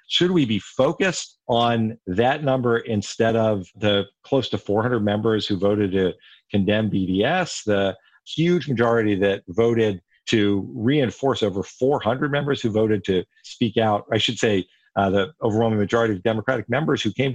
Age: 50-69